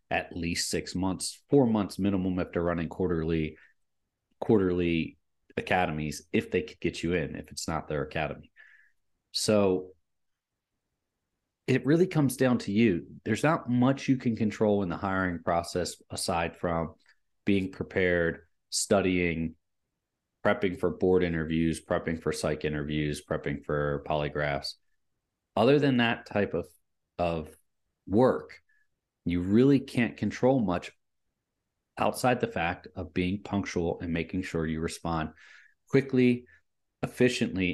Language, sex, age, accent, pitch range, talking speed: English, male, 30-49, American, 85-110 Hz, 130 wpm